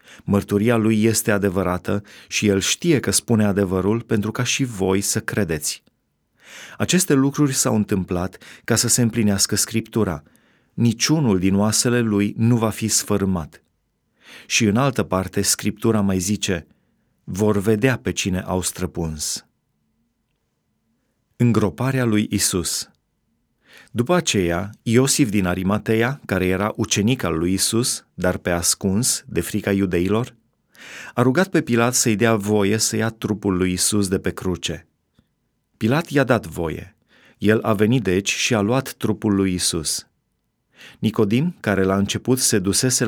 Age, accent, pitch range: 30-49, native, 95-120 Hz